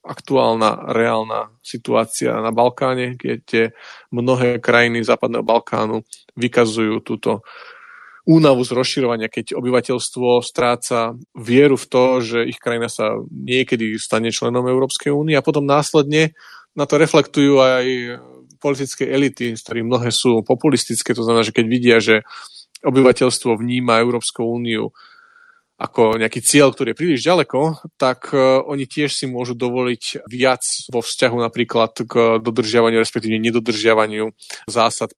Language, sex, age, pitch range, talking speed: Slovak, male, 20-39, 115-130 Hz, 130 wpm